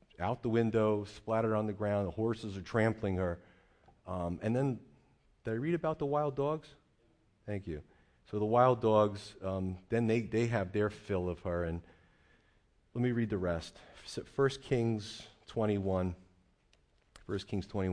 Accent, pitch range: American, 90-110 Hz